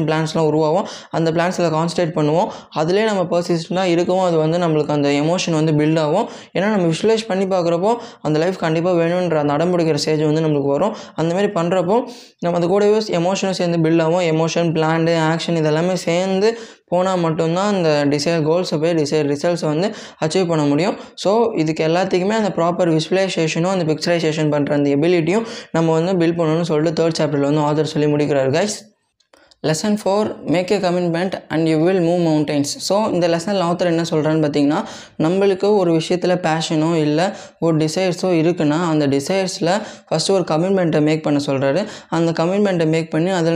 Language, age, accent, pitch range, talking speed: Tamil, 20-39, native, 155-185 Hz, 90 wpm